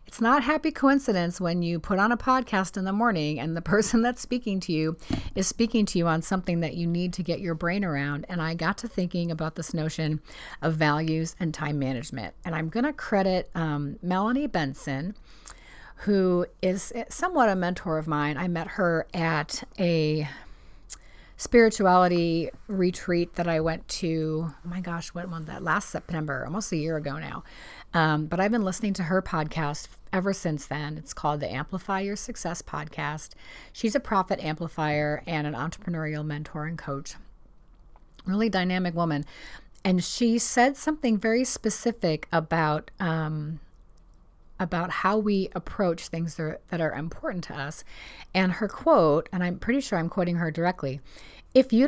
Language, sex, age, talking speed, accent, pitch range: English, female, 40-59, 170 wpm, American, 155-205 Hz